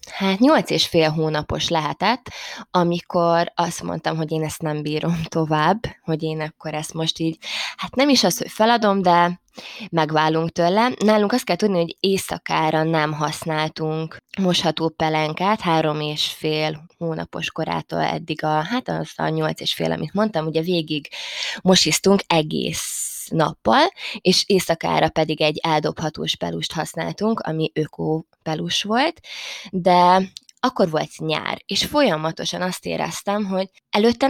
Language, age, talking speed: Hungarian, 20-39, 140 wpm